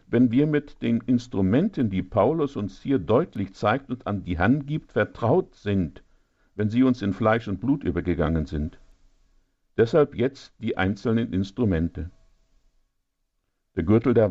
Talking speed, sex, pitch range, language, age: 145 wpm, male, 90-125 Hz, German, 50-69